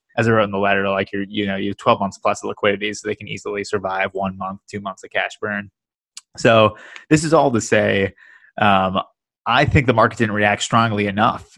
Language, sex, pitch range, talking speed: English, male, 100-115 Hz, 230 wpm